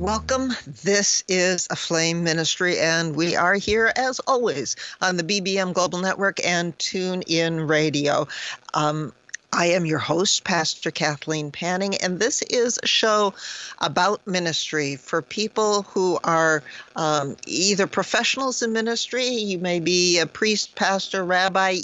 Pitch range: 165-200 Hz